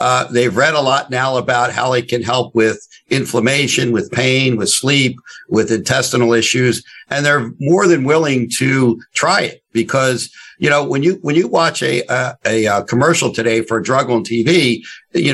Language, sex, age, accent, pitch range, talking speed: English, male, 60-79, American, 120-150 Hz, 185 wpm